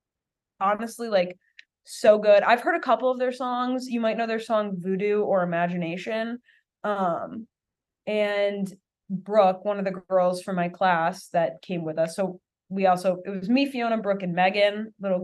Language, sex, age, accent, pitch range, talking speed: English, female, 20-39, American, 190-275 Hz, 175 wpm